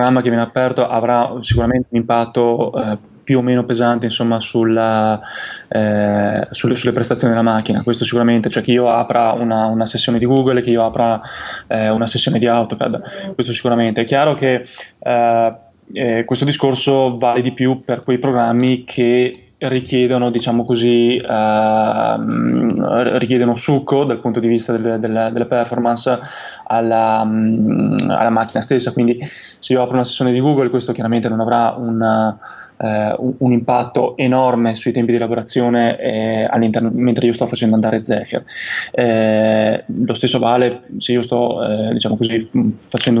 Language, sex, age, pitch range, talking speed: Italian, male, 20-39, 115-125 Hz, 150 wpm